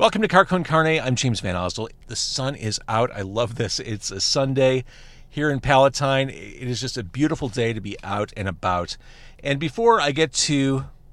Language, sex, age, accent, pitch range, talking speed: English, male, 40-59, American, 105-145 Hz, 200 wpm